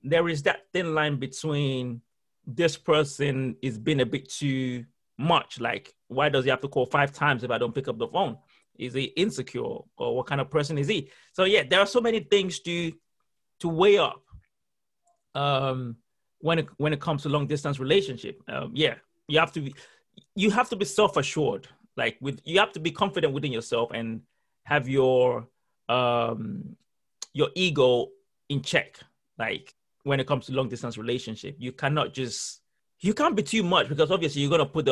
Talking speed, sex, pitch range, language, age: 190 wpm, male, 130-165 Hz, English, 30-49